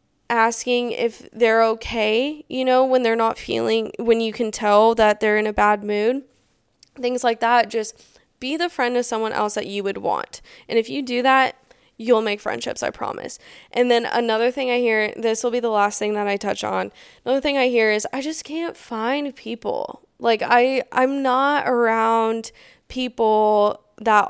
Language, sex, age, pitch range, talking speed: English, female, 10-29, 210-255 Hz, 190 wpm